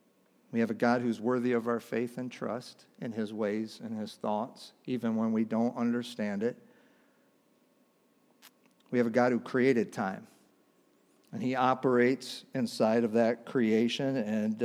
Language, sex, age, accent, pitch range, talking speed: English, male, 50-69, American, 120-160 Hz, 155 wpm